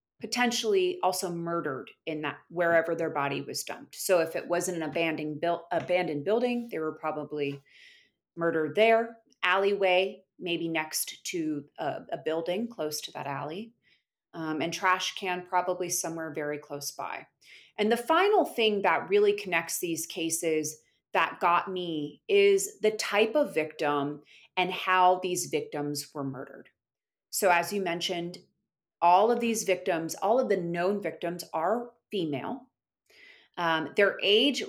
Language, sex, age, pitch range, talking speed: English, female, 30-49, 160-205 Hz, 145 wpm